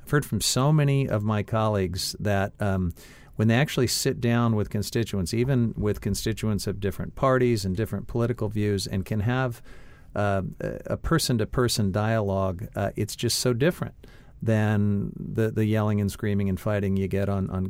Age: 50-69